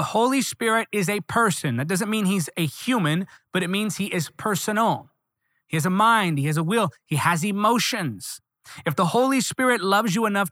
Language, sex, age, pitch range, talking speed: English, male, 30-49, 150-210 Hz, 205 wpm